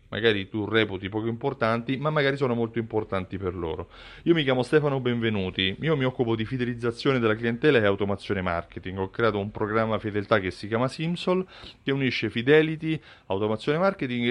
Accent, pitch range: native, 105-140 Hz